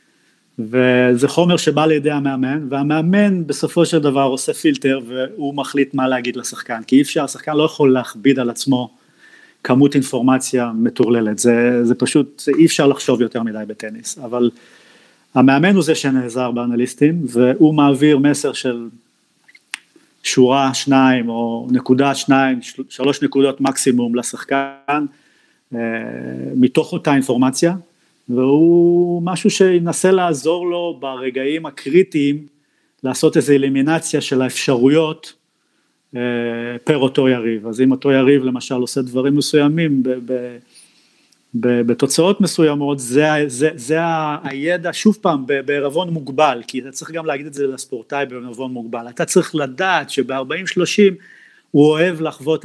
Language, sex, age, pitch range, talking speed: Hebrew, male, 30-49, 125-155 Hz, 130 wpm